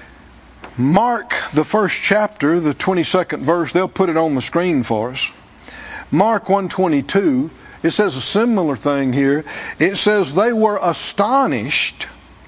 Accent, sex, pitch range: American, male, 155-200 Hz